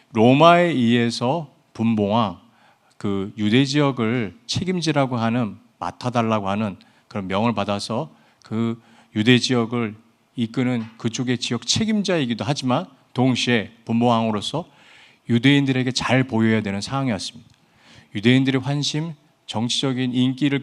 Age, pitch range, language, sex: 40-59, 115-140 Hz, Korean, male